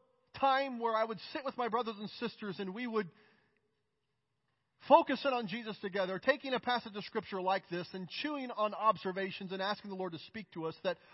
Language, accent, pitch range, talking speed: English, American, 175-230 Hz, 205 wpm